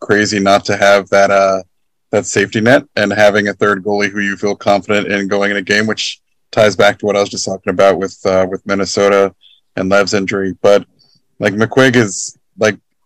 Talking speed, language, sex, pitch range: 205 wpm, English, male, 100-125 Hz